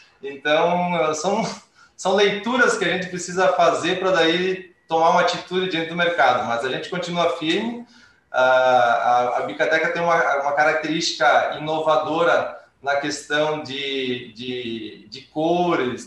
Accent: Brazilian